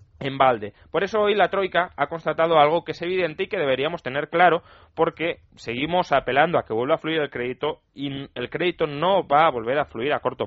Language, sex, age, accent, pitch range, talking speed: Spanish, male, 20-39, Spanish, 115-160 Hz, 225 wpm